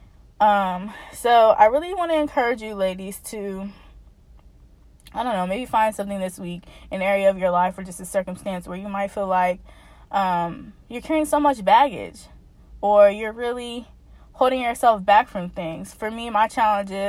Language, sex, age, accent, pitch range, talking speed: English, female, 20-39, American, 195-230 Hz, 175 wpm